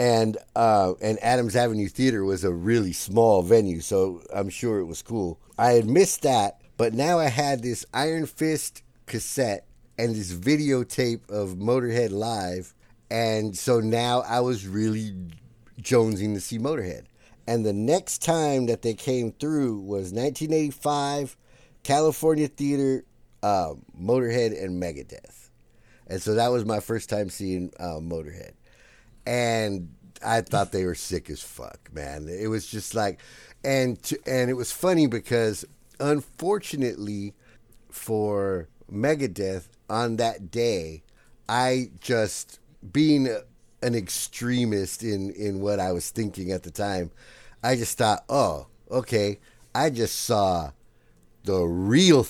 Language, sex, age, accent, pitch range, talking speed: English, male, 50-69, American, 100-125 Hz, 140 wpm